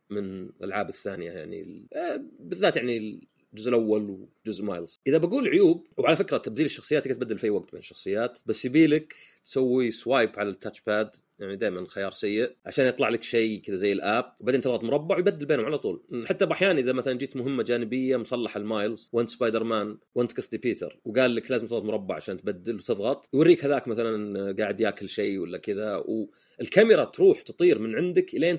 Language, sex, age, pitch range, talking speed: Arabic, male, 30-49, 105-140 Hz, 180 wpm